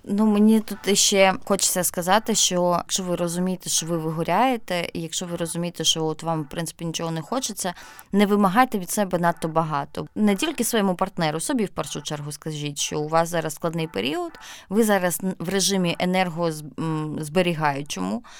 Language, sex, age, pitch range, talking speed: Ukrainian, female, 20-39, 165-200 Hz, 165 wpm